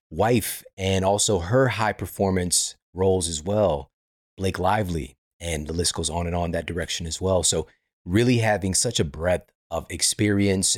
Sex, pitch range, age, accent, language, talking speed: male, 90-120 Hz, 30-49, American, English, 165 wpm